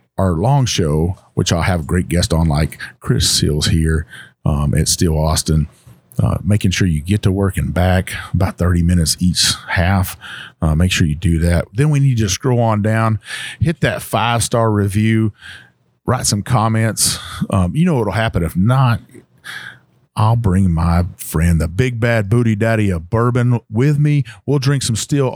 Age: 40-59